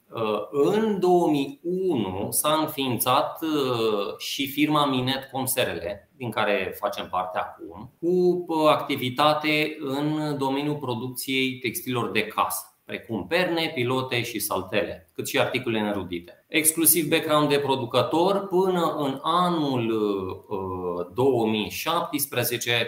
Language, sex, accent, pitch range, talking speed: Romanian, male, native, 120-160 Hz, 100 wpm